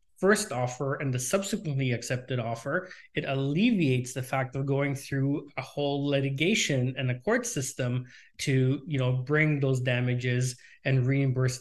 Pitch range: 135-165 Hz